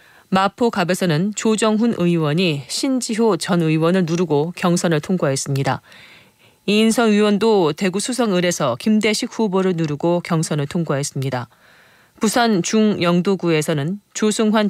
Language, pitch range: Korean, 165-210 Hz